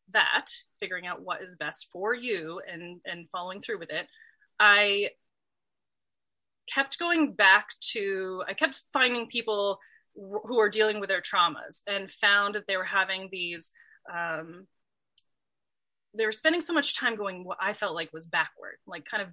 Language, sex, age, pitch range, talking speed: English, female, 20-39, 190-240 Hz, 165 wpm